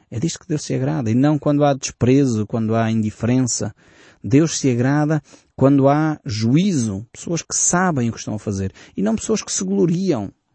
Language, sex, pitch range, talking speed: Portuguese, male, 110-145 Hz, 195 wpm